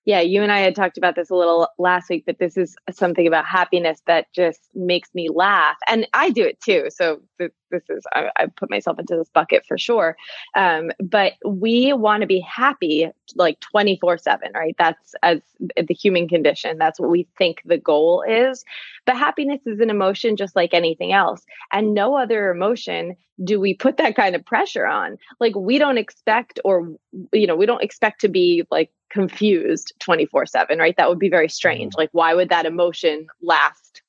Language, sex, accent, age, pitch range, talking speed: English, female, American, 20-39, 175-220 Hz, 195 wpm